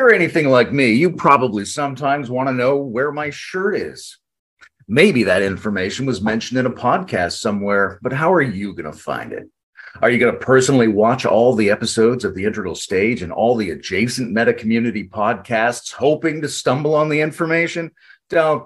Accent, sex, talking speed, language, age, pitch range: American, male, 175 wpm, English, 40-59, 100-140 Hz